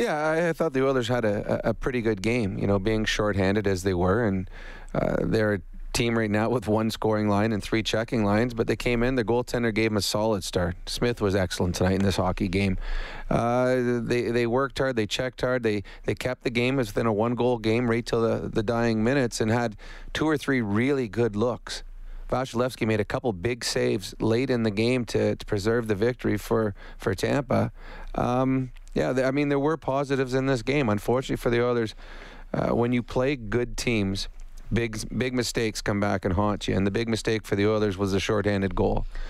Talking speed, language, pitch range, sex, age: 215 wpm, English, 105-120 Hz, male, 30-49